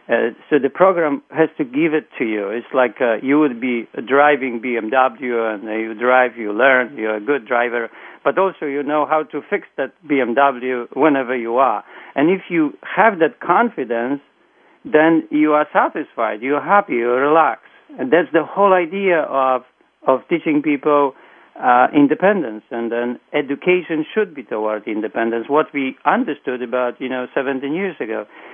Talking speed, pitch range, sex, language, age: 170 wpm, 125-155 Hz, male, English, 50-69